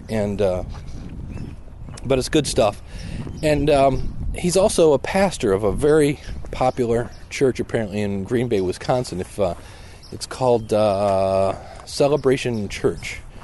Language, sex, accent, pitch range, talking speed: English, male, American, 105-165 Hz, 130 wpm